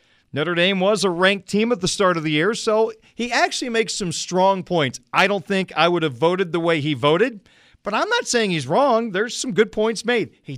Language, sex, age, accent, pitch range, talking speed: English, male, 40-59, American, 160-195 Hz, 240 wpm